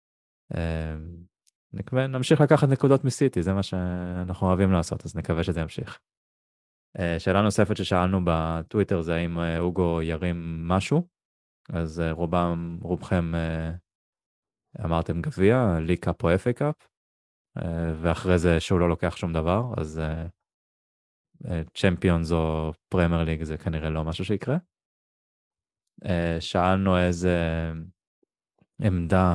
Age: 20-39